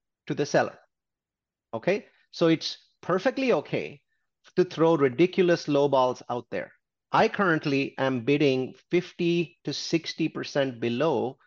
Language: English